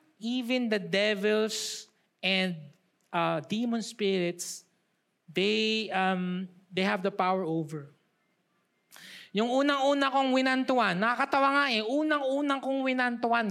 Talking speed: 105 wpm